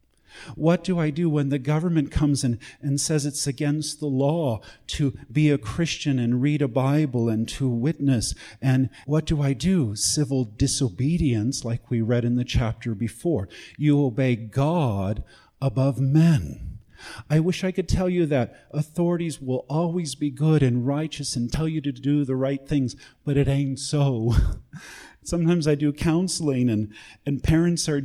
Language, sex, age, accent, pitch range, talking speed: English, male, 50-69, American, 115-150 Hz, 170 wpm